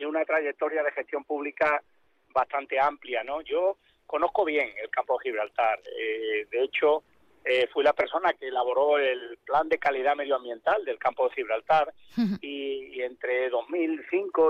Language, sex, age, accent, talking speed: Spanish, male, 40-59, Spanish, 155 wpm